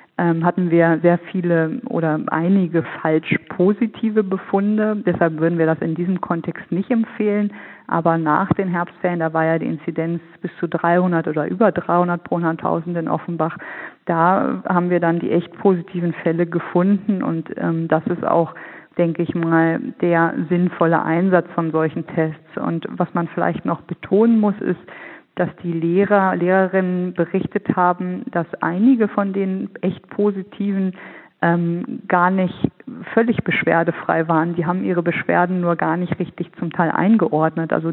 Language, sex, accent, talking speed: German, female, German, 155 wpm